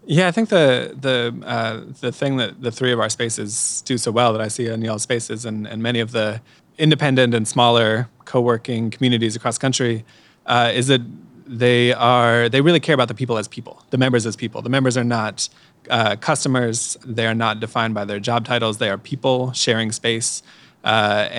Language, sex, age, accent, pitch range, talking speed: English, male, 20-39, American, 110-130 Hz, 205 wpm